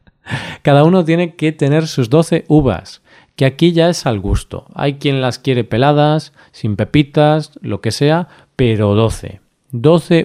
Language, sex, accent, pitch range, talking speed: Spanish, male, Spanish, 120-150 Hz, 160 wpm